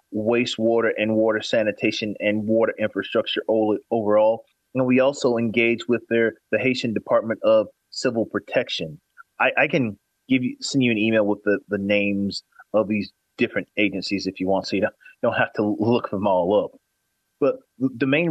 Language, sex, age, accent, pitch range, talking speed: English, male, 30-49, American, 105-120 Hz, 160 wpm